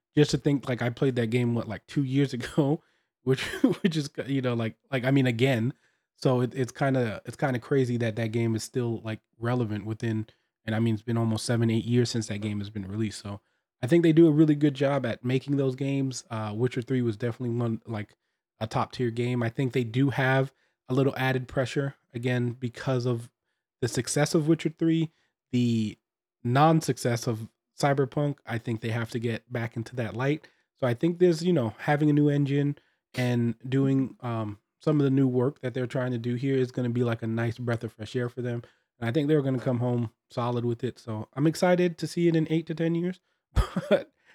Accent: American